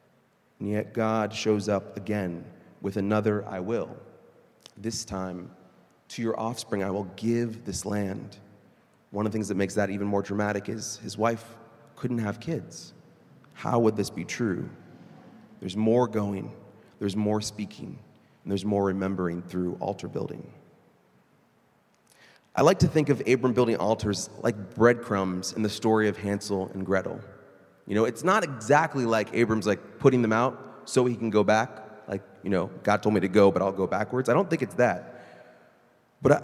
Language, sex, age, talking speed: English, male, 30-49, 175 wpm